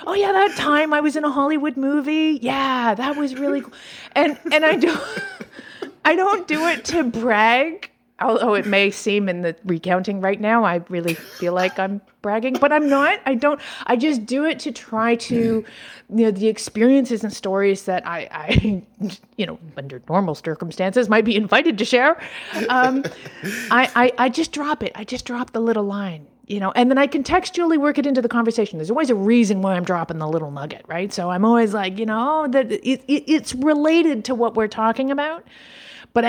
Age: 30-49